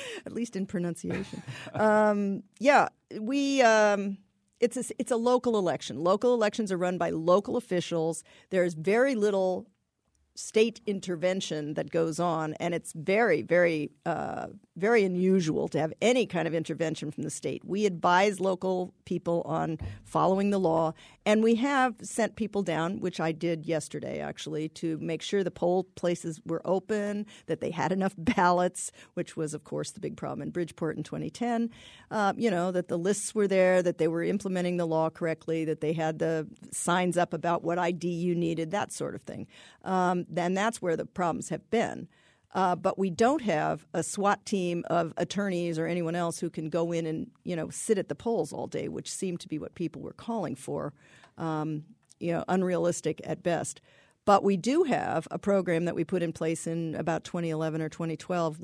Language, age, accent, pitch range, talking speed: English, 50-69, American, 165-200 Hz, 185 wpm